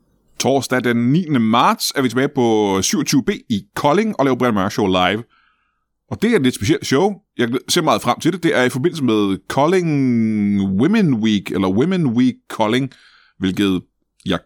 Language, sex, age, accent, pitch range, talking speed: Danish, male, 30-49, native, 100-140 Hz, 185 wpm